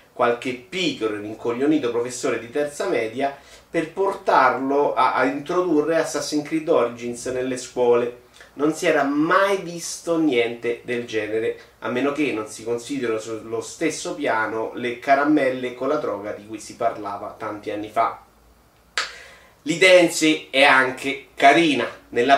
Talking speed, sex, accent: 140 wpm, male, native